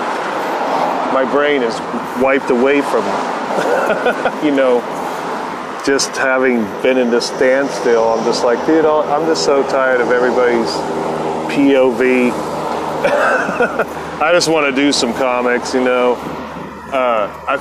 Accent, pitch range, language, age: American, 115-135 Hz, English, 30-49